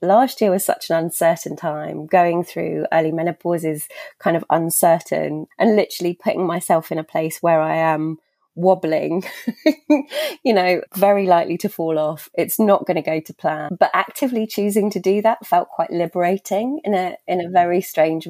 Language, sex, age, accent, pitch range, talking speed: English, female, 20-39, British, 160-205 Hz, 180 wpm